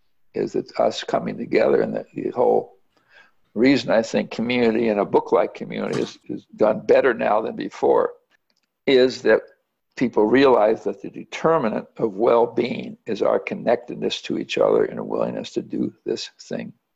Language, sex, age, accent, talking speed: English, male, 60-79, American, 170 wpm